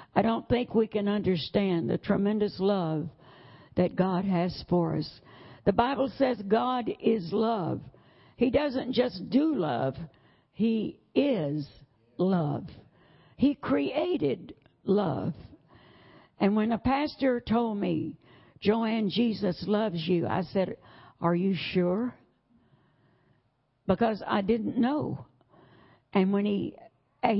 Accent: American